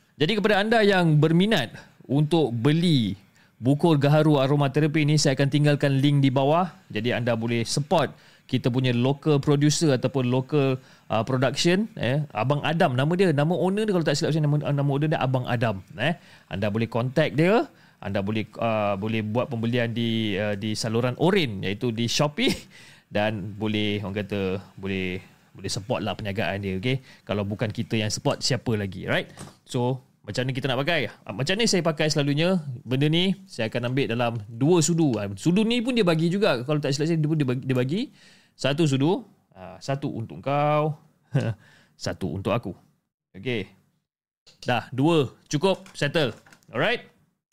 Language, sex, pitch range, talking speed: Malay, male, 115-165 Hz, 165 wpm